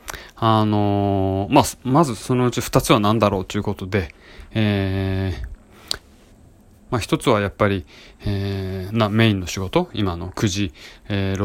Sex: male